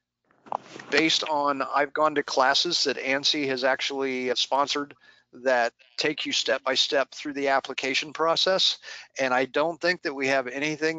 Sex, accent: male, American